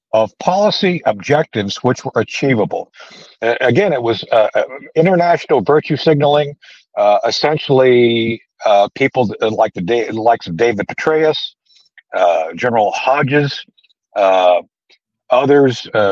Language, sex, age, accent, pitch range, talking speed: English, male, 60-79, American, 110-150 Hz, 120 wpm